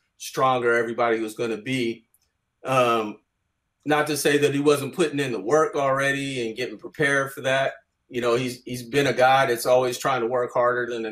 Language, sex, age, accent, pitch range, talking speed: English, male, 30-49, American, 110-130 Hz, 205 wpm